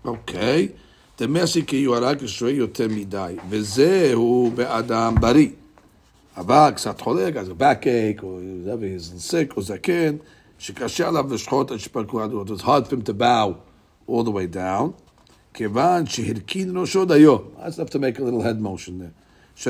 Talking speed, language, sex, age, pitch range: 195 wpm, English, male, 50-69, 105-135 Hz